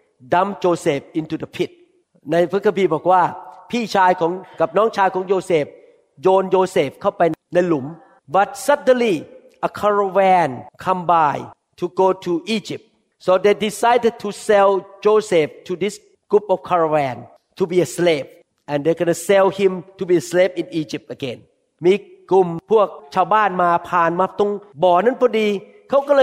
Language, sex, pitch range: Thai, male, 180-240 Hz